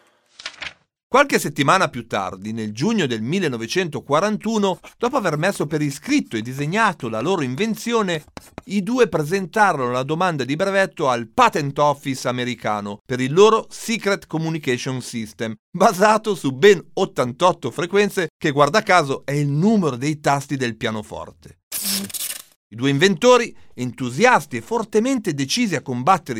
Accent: native